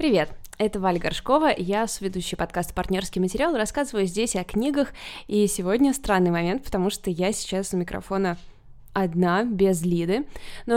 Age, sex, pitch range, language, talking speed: 20-39, female, 185-220 Hz, Russian, 155 wpm